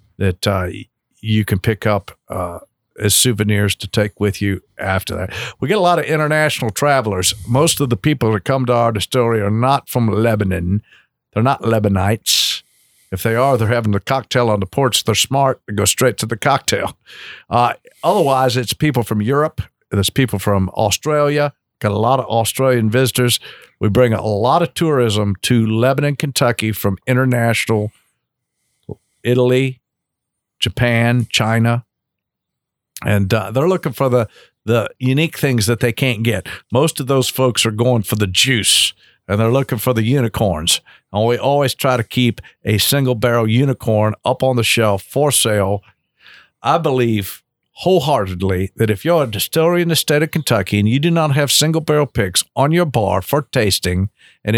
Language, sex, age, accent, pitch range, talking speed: English, male, 50-69, American, 105-135 Hz, 170 wpm